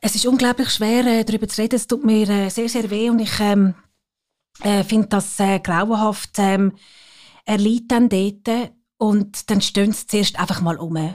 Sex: female